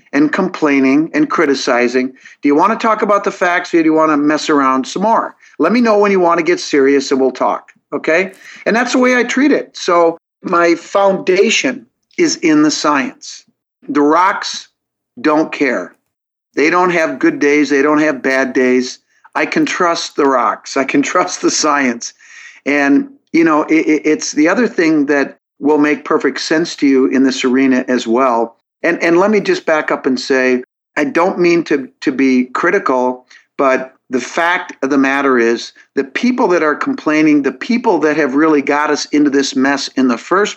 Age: 50-69